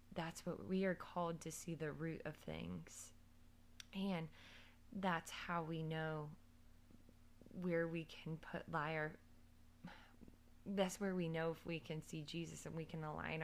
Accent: American